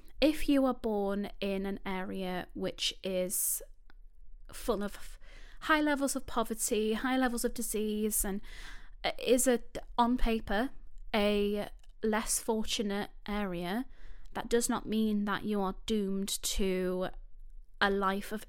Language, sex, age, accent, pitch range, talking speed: English, female, 20-39, British, 195-240 Hz, 125 wpm